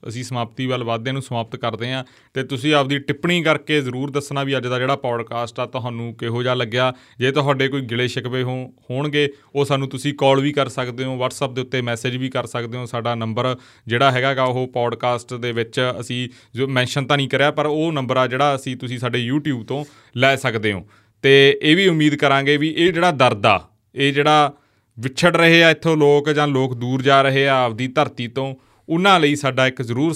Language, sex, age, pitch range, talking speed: Punjabi, male, 30-49, 125-145 Hz, 165 wpm